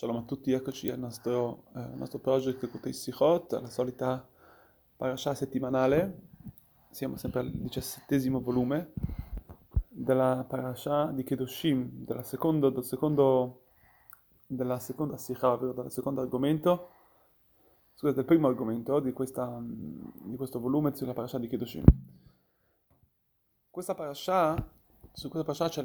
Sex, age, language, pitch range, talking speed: male, 20-39, Italian, 130-160 Hz, 125 wpm